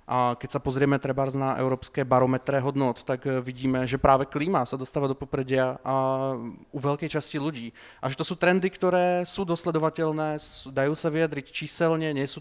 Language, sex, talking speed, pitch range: Czech, male, 170 wpm, 130-150 Hz